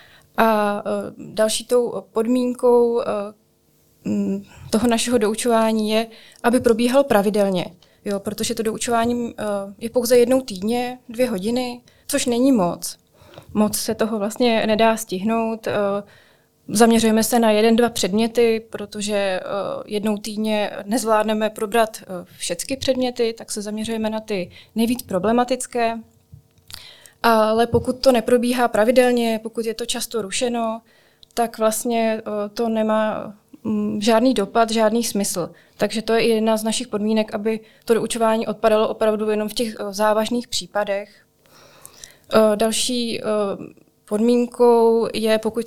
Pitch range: 210-235 Hz